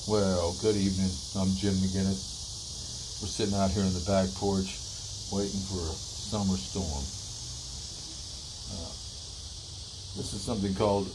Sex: male